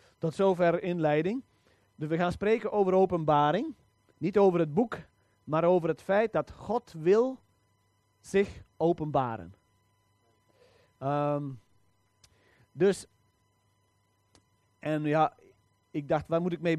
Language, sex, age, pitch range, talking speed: Dutch, male, 30-49, 110-175 Hz, 110 wpm